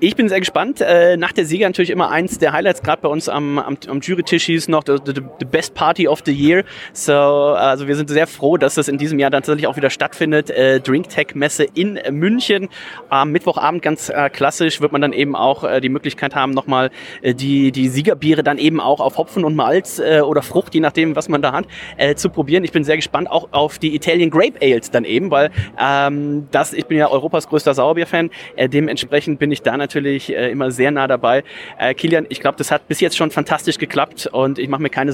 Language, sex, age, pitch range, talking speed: German, male, 30-49, 140-160 Hz, 220 wpm